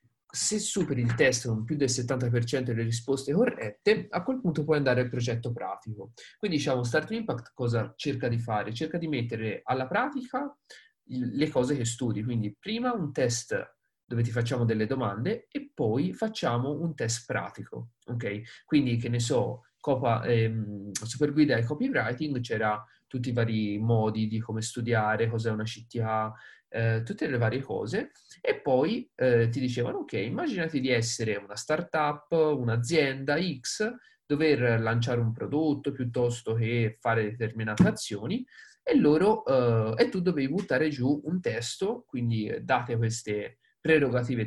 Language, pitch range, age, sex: Italian, 115-155 Hz, 30-49, male